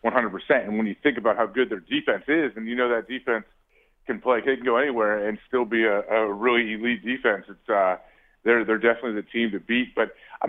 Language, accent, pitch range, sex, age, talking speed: English, American, 110-125 Hz, male, 30-49, 235 wpm